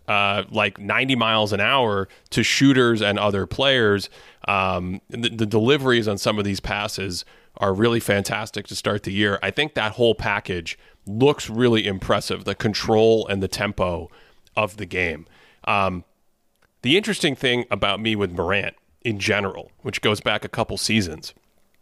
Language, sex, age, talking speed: English, male, 30-49, 160 wpm